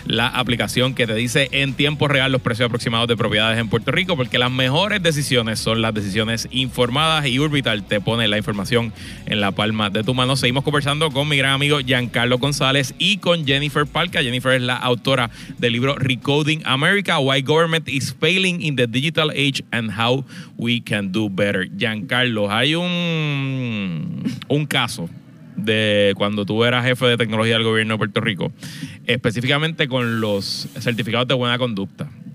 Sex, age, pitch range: male, 30-49, 120-150 Hz